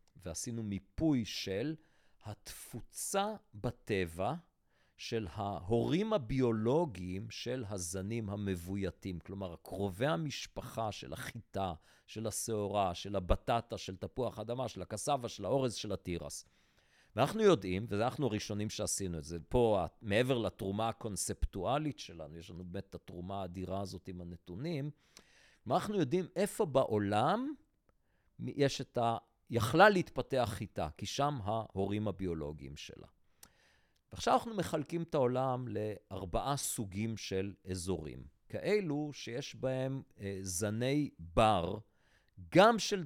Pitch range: 95-130 Hz